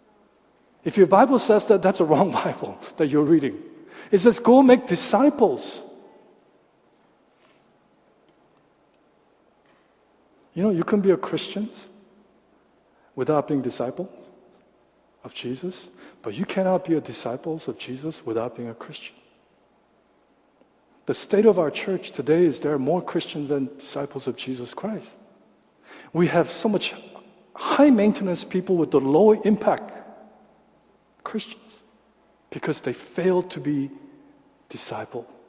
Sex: male